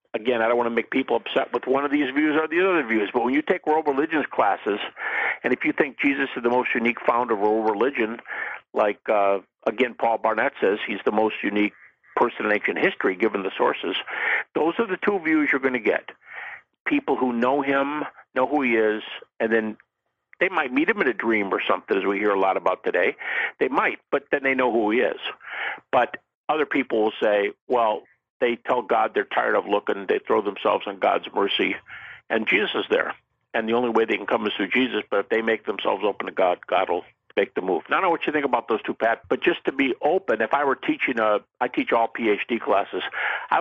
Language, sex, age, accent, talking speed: English, male, 50-69, American, 235 wpm